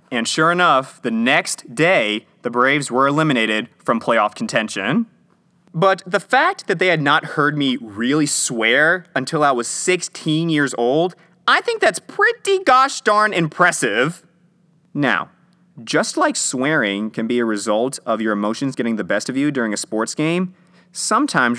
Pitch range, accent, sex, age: 115-180 Hz, American, male, 20-39